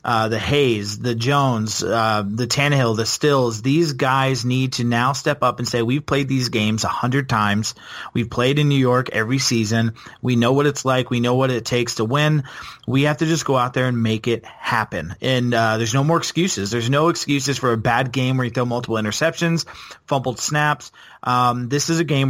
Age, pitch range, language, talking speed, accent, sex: 30-49, 120-135 Hz, English, 220 wpm, American, male